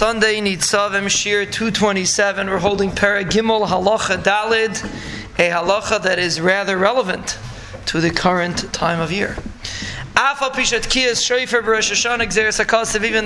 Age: 20-39